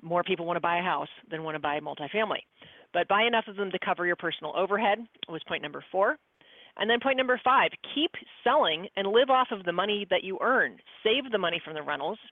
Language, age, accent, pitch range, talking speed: English, 30-49, American, 175-225 Hz, 230 wpm